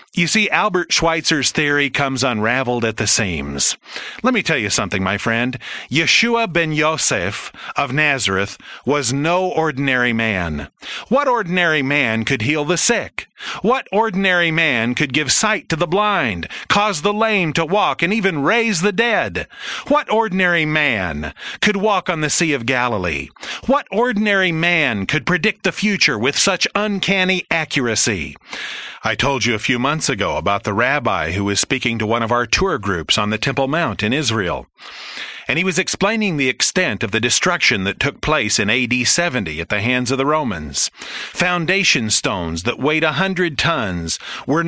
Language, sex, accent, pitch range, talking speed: English, male, American, 125-185 Hz, 170 wpm